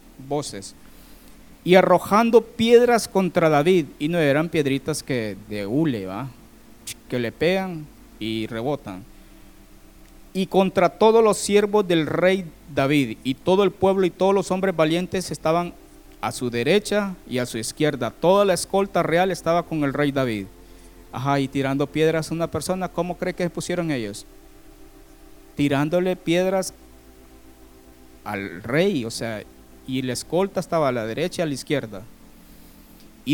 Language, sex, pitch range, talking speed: Spanish, male, 135-205 Hz, 150 wpm